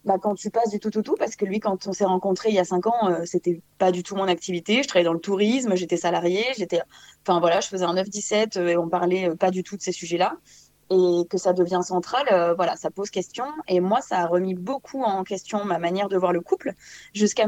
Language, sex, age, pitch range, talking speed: French, female, 20-39, 180-215 Hz, 260 wpm